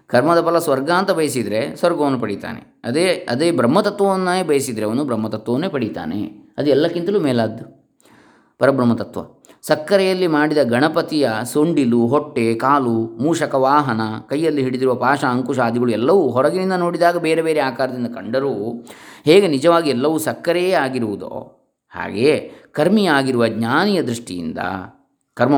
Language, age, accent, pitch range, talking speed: Kannada, 20-39, native, 110-145 Hz, 110 wpm